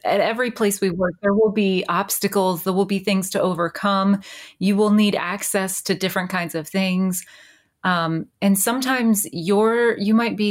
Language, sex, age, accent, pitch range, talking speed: English, female, 30-49, American, 175-210 Hz, 175 wpm